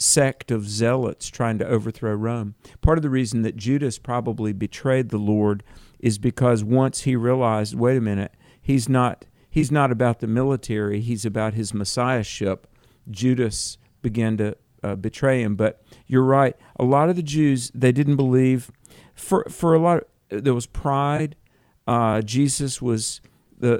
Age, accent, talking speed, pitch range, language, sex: 50-69, American, 165 wpm, 110-135 Hz, English, male